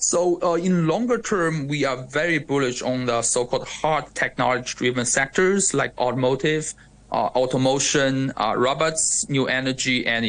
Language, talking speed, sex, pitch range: English, 140 wpm, male, 120-145 Hz